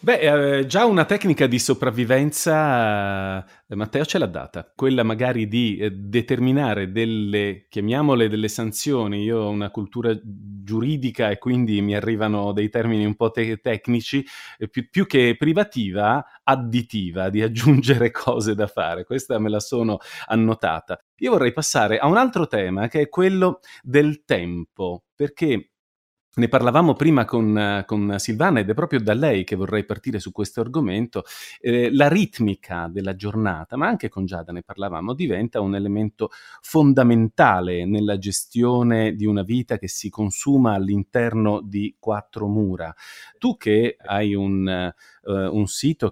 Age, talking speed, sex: 30-49, 145 wpm, male